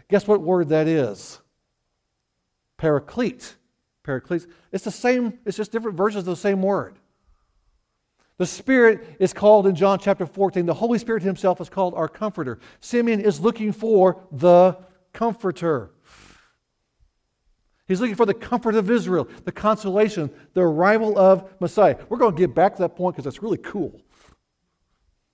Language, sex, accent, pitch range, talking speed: English, male, American, 165-225 Hz, 155 wpm